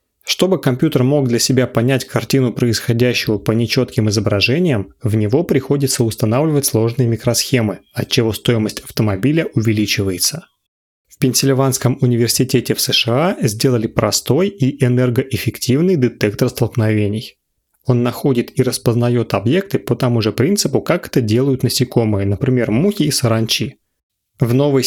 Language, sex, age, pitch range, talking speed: Russian, male, 30-49, 110-135 Hz, 125 wpm